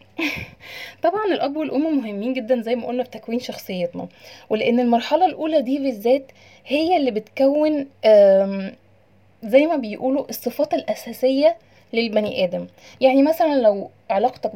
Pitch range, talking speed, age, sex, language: 220-270 Hz, 125 wpm, 20-39, female, Arabic